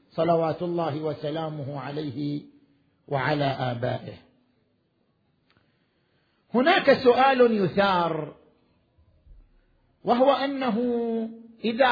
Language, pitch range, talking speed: Arabic, 165-245 Hz, 60 wpm